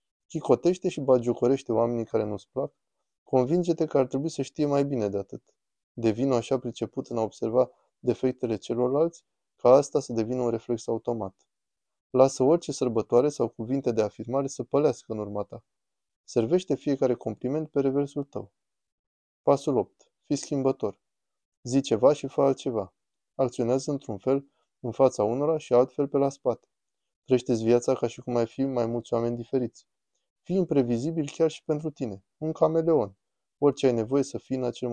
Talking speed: 165 wpm